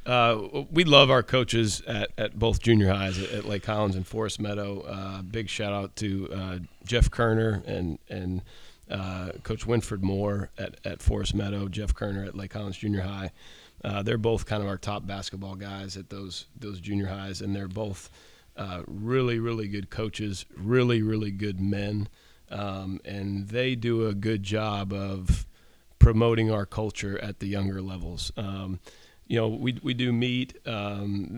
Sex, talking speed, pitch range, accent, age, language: male, 170 wpm, 95-110 Hz, American, 30-49, English